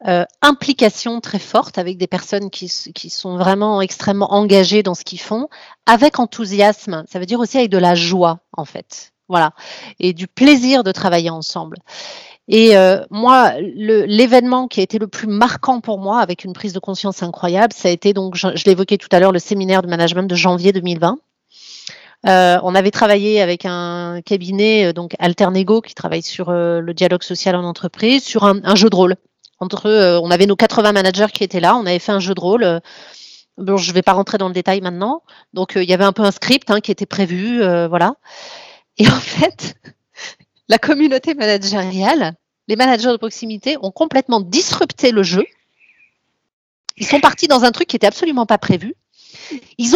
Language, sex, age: French, female, 30-49